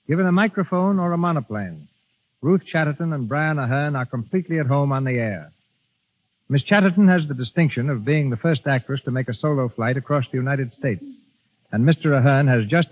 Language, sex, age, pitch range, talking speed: English, male, 60-79, 125-165 Hz, 195 wpm